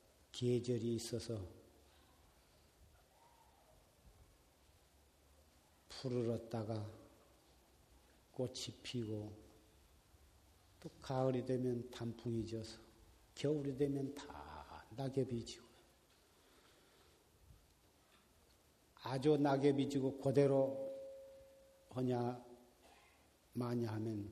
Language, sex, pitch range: Korean, male, 110-155 Hz